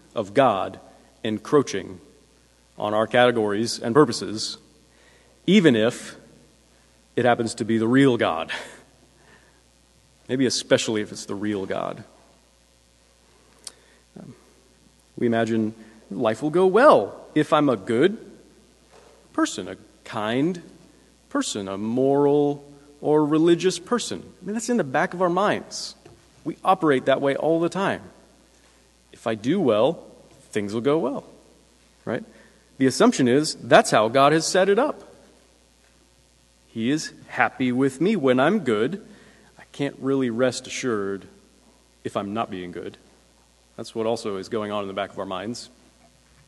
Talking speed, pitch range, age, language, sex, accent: 140 wpm, 95-145 Hz, 40-59, English, male, American